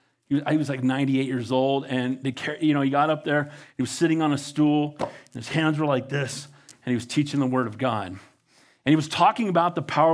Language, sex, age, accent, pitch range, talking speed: English, male, 40-59, American, 140-200 Hz, 245 wpm